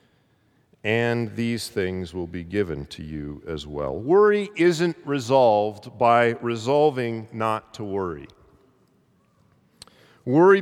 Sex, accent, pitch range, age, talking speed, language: male, American, 120-160 Hz, 50-69, 105 wpm, English